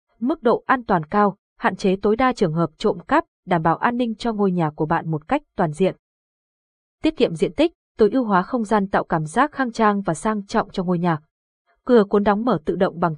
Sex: female